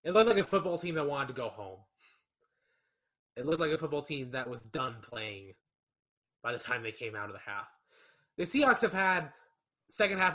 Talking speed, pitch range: 205 wpm, 130-185 Hz